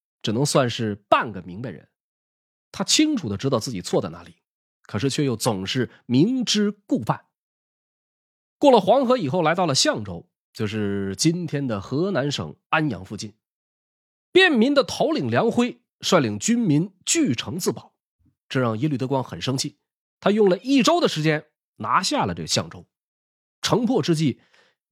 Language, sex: Chinese, male